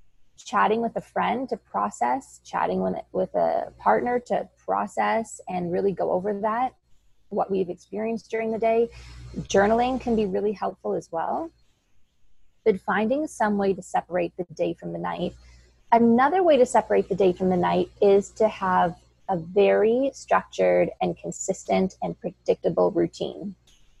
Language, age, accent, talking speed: English, 20-39, American, 150 wpm